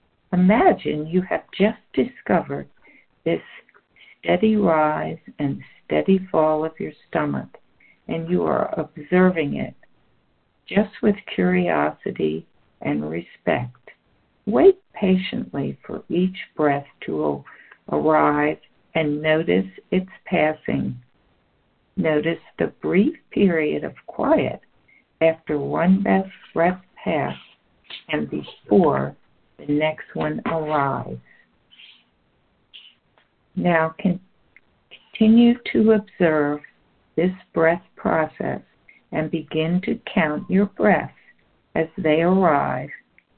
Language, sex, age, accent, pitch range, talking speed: English, female, 60-79, American, 150-195 Hz, 95 wpm